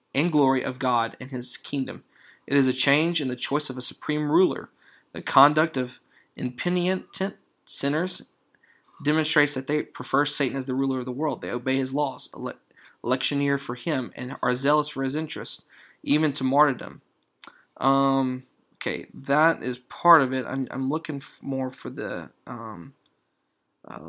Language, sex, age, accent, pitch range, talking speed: English, male, 20-39, American, 130-150 Hz, 160 wpm